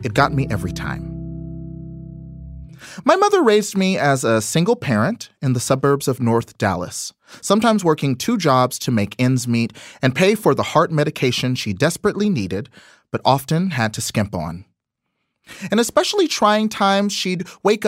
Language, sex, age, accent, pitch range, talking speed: English, male, 30-49, American, 120-185 Hz, 160 wpm